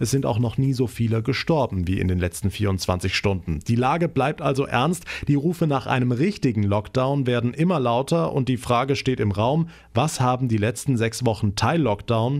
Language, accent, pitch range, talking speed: German, German, 110-155 Hz, 200 wpm